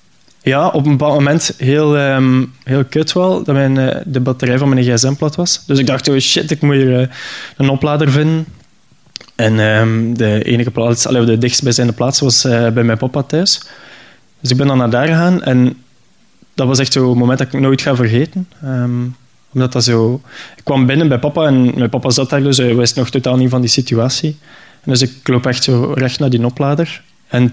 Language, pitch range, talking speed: Dutch, 120-145 Hz, 195 wpm